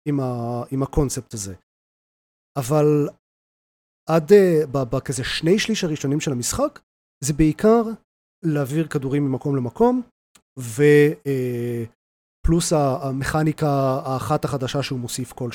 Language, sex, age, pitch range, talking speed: Hebrew, male, 30-49, 125-155 Hz, 110 wpm